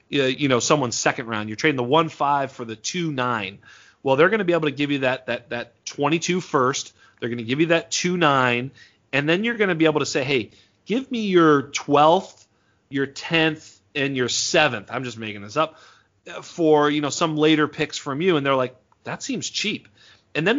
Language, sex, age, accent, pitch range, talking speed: English, male, 30-49, American, 130-155 Hz, 220 wpm